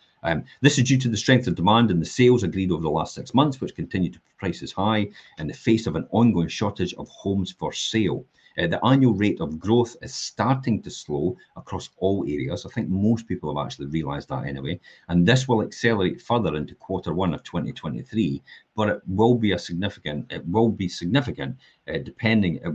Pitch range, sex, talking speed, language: 85-120 Hz, male, 205 wpm, English